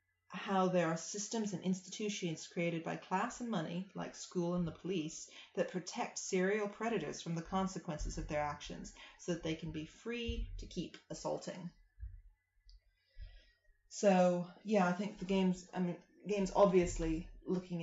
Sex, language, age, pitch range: female, English, 30-49, 150-190 Hz